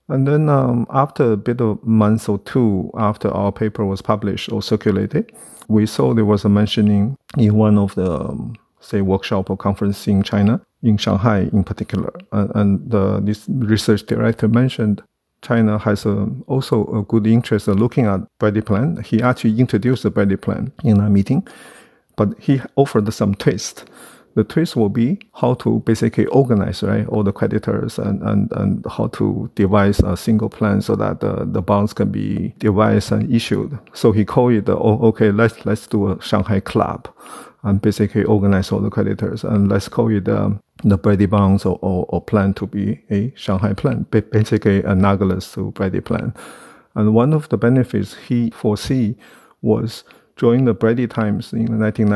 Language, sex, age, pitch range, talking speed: English, male, 50-69, 100-115 Hz, 180 wpm